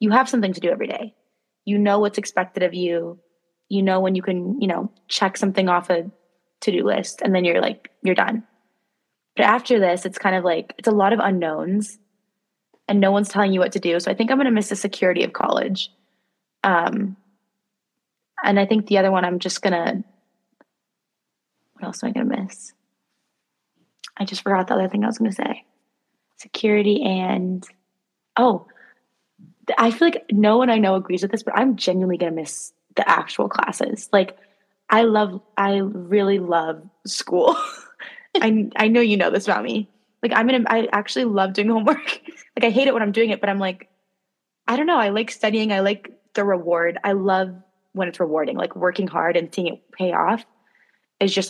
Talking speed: 200 wpm